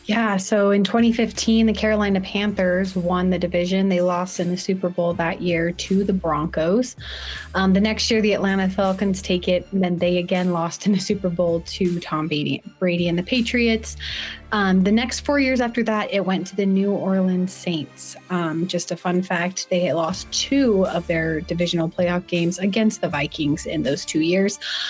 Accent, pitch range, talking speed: American, 175-205 Hz, 195 wpm